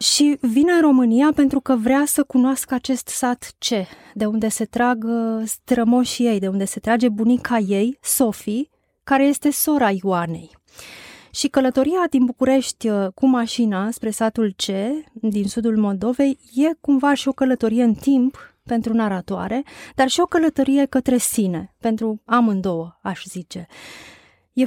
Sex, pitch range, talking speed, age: female, 205-260 Hz, 150 wpm, 20-39